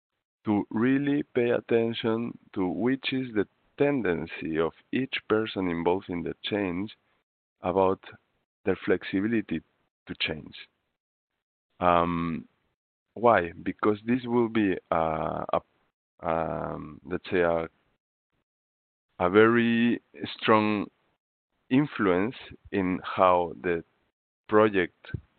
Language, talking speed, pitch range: English, 95 wpm, 85-110 Hz